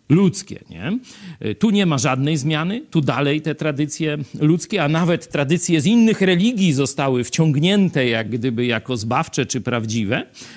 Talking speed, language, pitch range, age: 150 wpm, Polish, 125-175 Hz, 50-69